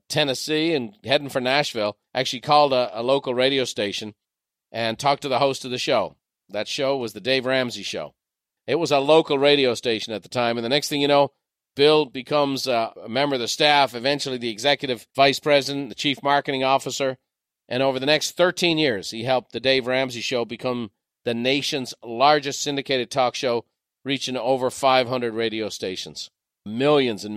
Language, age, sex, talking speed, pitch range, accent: English, 40-59, male, 185 wpm, 120-140 Hz, American